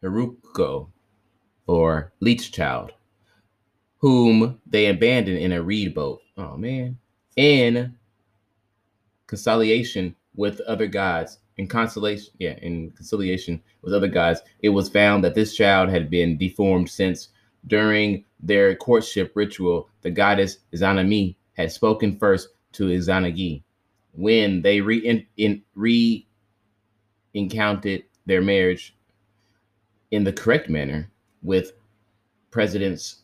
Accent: American